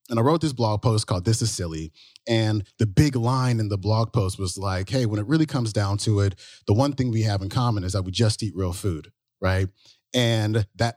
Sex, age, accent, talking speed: male, 30-49, American, 245 wpm